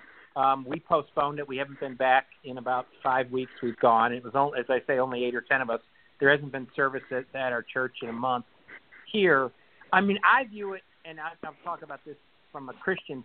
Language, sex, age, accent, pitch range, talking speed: English, male, 50-69, American, 125-155 Hz, 235 wpm